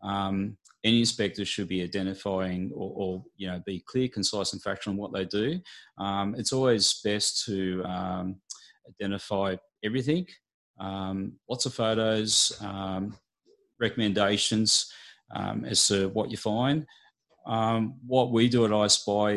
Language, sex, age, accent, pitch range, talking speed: English, male, 30-49, Australian, 100-115 Hz, 140 wpm